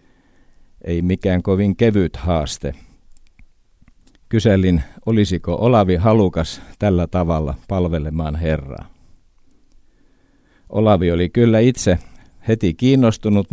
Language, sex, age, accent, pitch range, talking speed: Finnish, male, 50-69, native, 80-100 Hz, 85 wpm